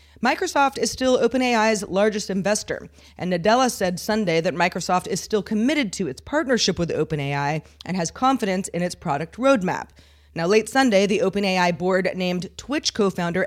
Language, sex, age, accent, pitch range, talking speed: English, female, 40-59, American, 170-220 Hz, 160 wpm